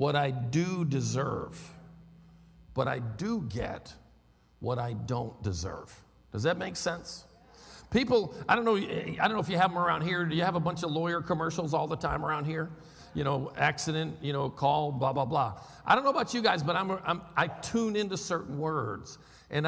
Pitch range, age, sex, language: 115-170 Hz, 50-69, male, English